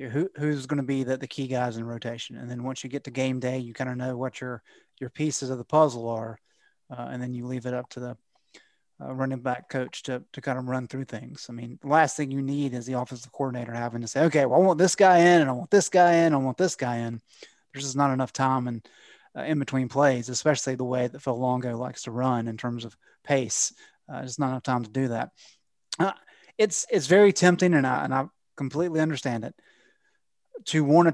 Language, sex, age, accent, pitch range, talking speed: English, male, 30-49, American, 125-165 Hz, 250 wpm